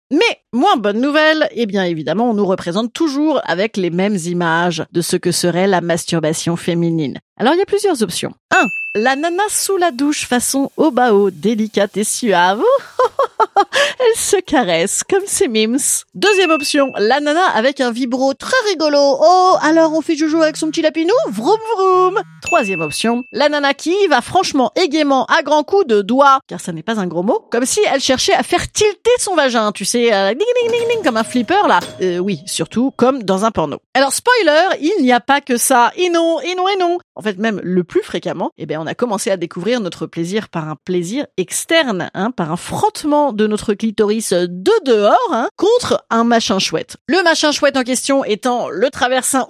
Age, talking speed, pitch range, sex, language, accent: 30-49, 205 wpm, 200-335 Hz, female, French, French